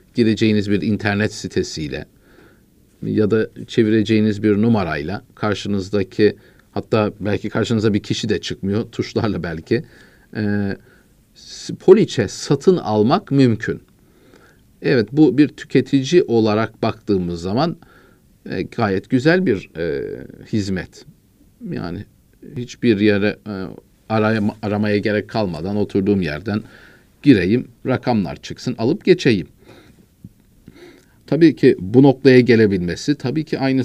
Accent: native